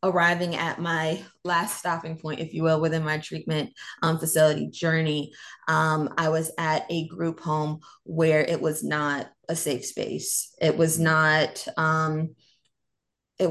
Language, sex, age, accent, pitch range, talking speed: English, female, 20-39, American, 160-180 Hz, 150 wpm